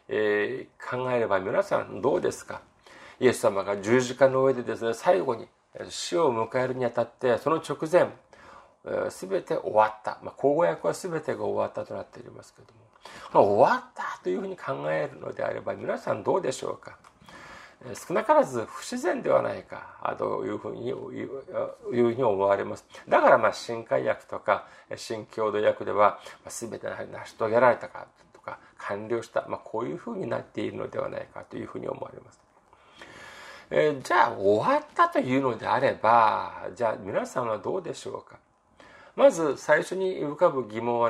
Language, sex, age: Japanese, male, 40-59